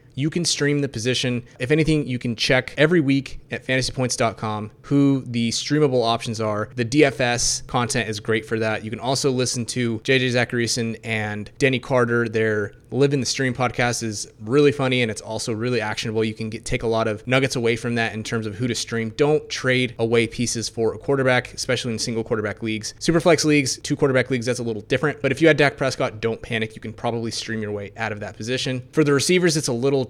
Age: 20-39